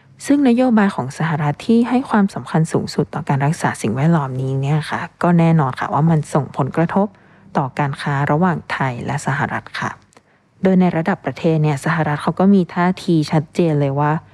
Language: Thai